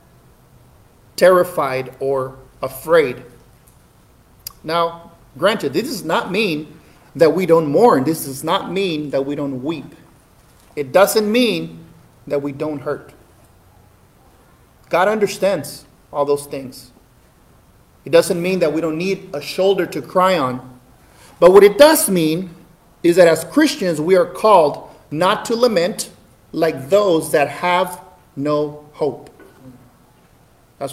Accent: American